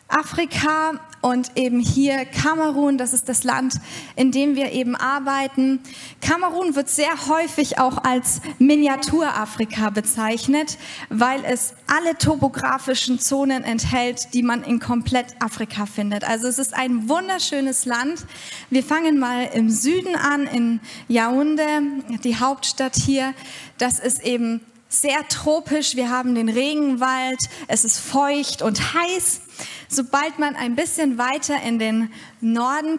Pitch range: 240-285 Hz